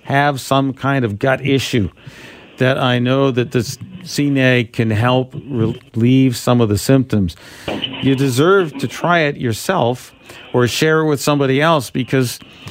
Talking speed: 150 wpm